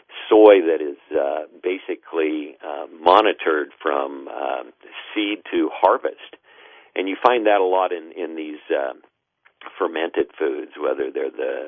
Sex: male